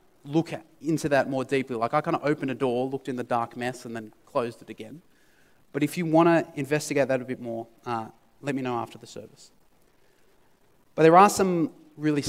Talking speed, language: 215 wpm, English